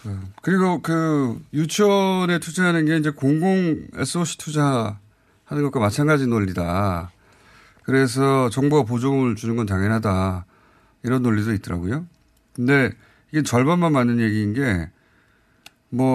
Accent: native